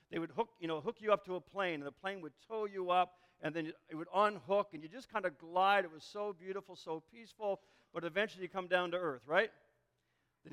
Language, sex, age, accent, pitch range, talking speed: English, male, 50-69, American, 170-215 Hz, 250 wpm